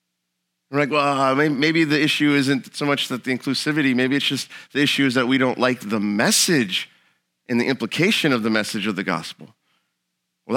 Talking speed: 200 wpm